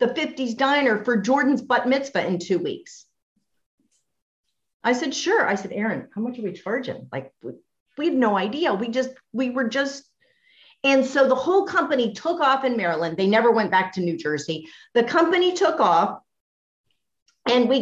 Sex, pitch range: female, 185-275 Hz